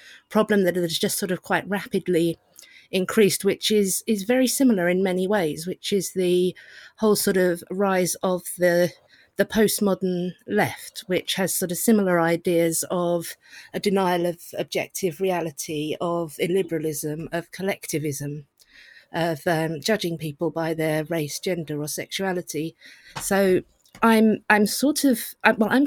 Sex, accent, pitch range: female, British, 175-210 Hz